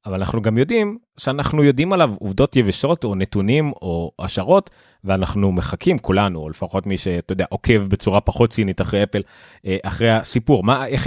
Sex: male